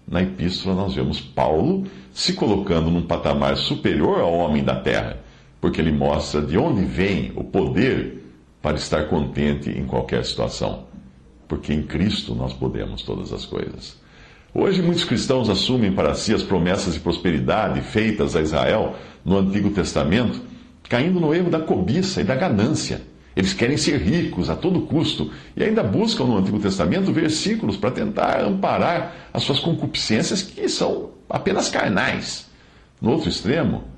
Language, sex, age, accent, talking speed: Portuguese, male, 60-79, Brazilian, 155 wpm